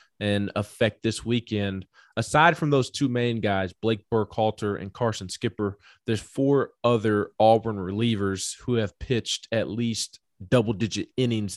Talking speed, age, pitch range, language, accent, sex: 145 wpm, 20-39, 105-120 Hz, English, American, male